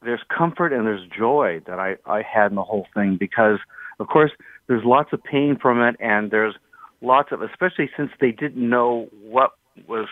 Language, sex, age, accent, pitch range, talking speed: English, male, 50-69, American, 105-130 Hz, 195 wpm